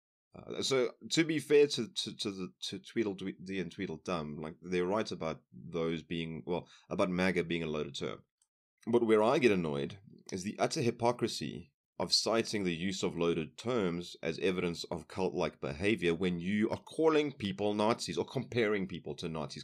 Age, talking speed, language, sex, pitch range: 30-49, 175 wpm, English, male, 80-110 Hz